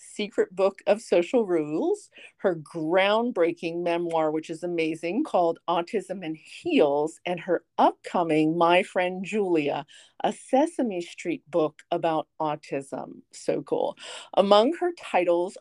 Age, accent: 50-69, American